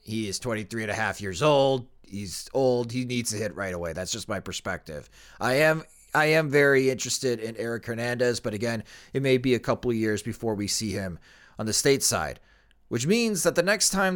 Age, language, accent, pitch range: 30-49, English, American, 110-145 Hz